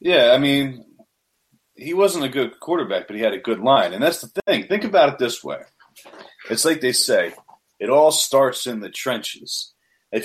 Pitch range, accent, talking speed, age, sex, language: 115-155 Hz, American, 200 wpm, 30-49, male, English